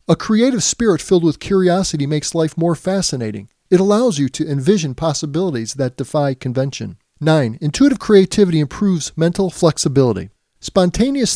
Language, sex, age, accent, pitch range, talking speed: English, male, 40-59, American, 145-195 Hz, 135 wpm